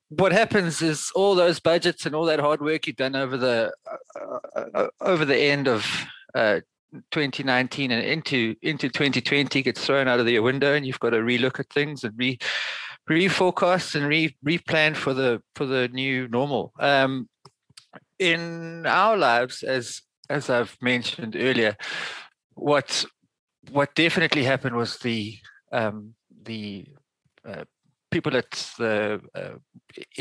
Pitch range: 120-160 Hz